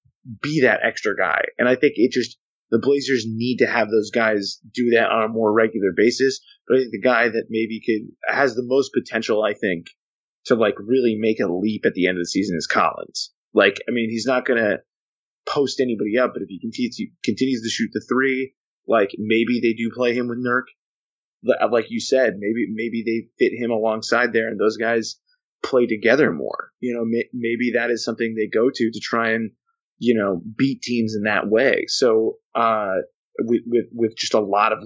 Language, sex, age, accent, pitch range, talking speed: English, male, 20-39, American, 110-130 Hz, 210 wpm